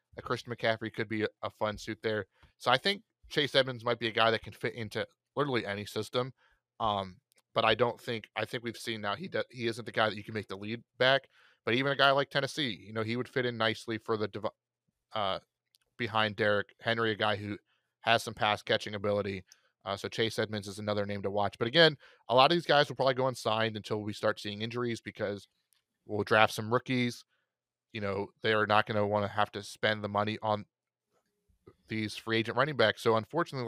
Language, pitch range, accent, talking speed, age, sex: English, 105-125 Hz, American, 230 wpm, 30-49, male